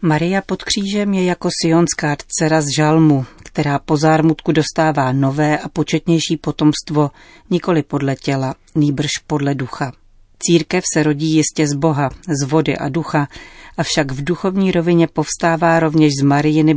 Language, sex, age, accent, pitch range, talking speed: Czech, female, 40-59, native, 145-170 Hz, 150 wpm